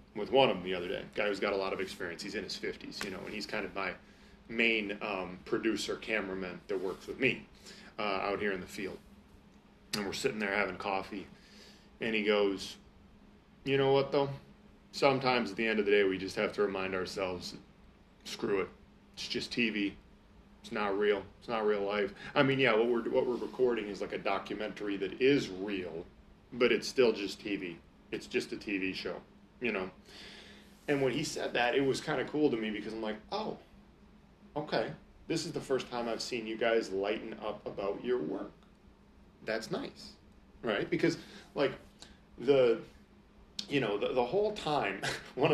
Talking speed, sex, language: 195 wpm, male, English